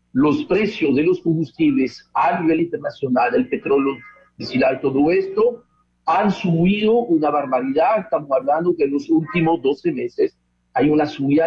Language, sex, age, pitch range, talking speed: Spanish, male, 50-69, 145-215 Hz, 145 wpm